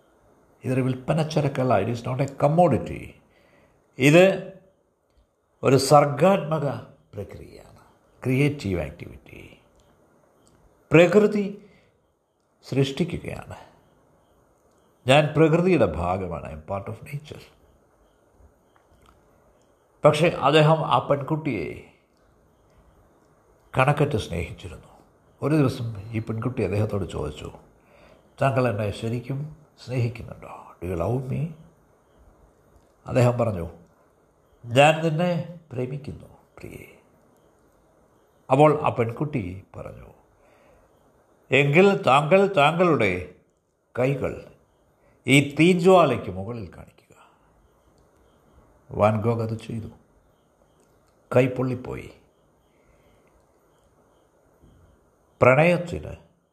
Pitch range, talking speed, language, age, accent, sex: 100-150 Hz, 70 wpm, Malayalam, 60-79, native, male